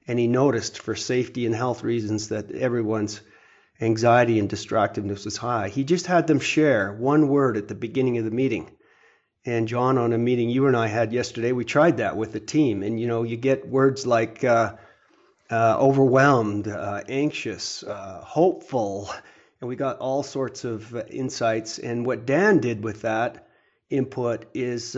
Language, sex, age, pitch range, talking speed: English, male, 40-59, 110-130 Hz, 175 wpm